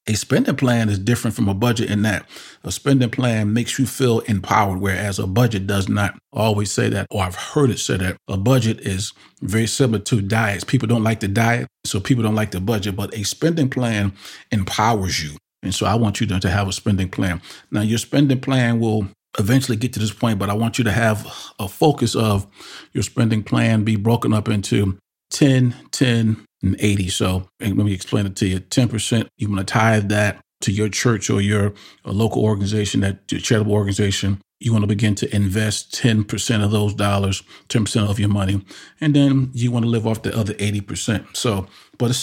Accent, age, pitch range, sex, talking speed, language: American, 40-59, 100-125 Hz, male, 205 wpm, English